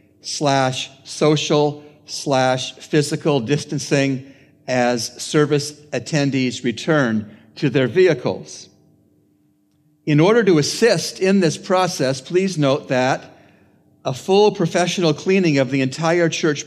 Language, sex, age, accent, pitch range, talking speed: English, male, 50-69, American, 130-160 Hz, 110 wpm